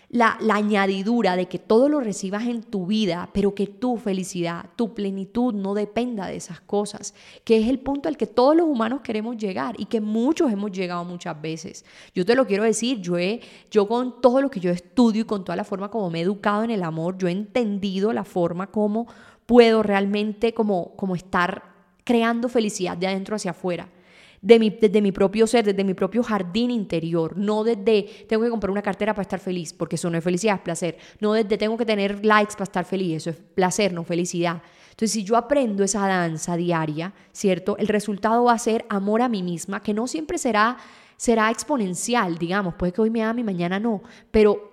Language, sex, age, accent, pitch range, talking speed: Spanish, female, 10-29, Colombian, 185-225 Hz, 210 wpm